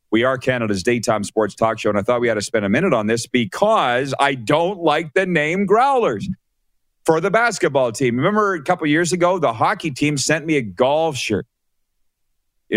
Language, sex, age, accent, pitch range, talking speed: English, male, 40-59, American, 120-180 Hz, 205 wpm